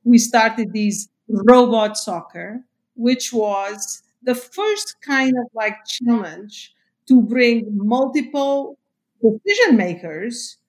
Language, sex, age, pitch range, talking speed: English, female, 50-69, 220-255 Hz, 100 wpm